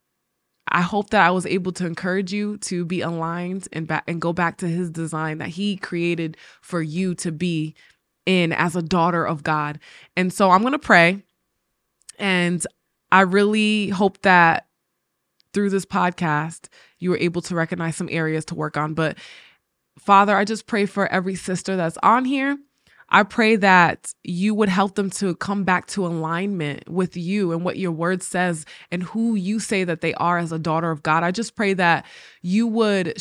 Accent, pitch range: American, 165-200 Hz